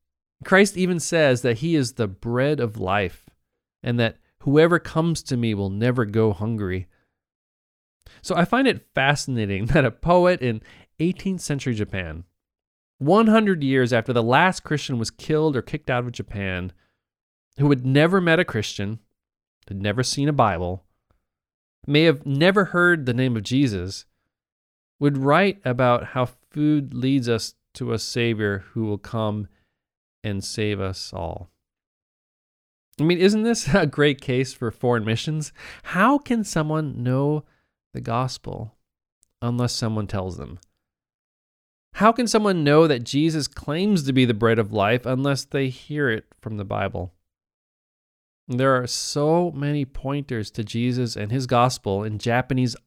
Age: 40-59